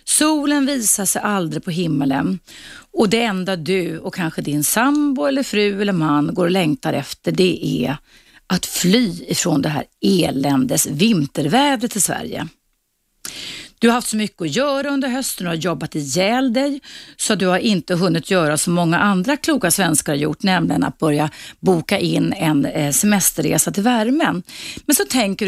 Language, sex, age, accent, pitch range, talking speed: Swedish, female, 30-49, native, 165-255 Hz, 170 wpm